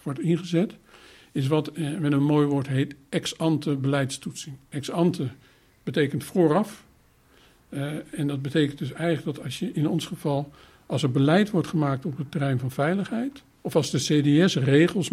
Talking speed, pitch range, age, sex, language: 165 wpm, 140-170 Hz, 60-79, male, Dutch